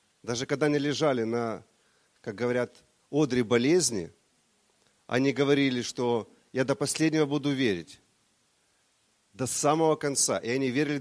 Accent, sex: native, male